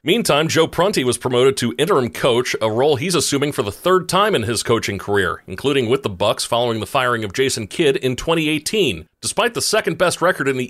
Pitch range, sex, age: 110-140 Hz, male, 40-59